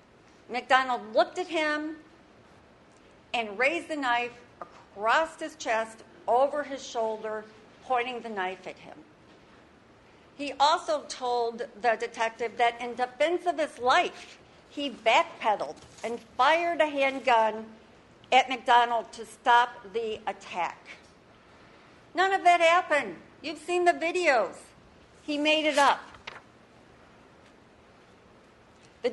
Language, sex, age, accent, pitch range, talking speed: English, female, 60-79, American, 220-290 Hz, 115 wpm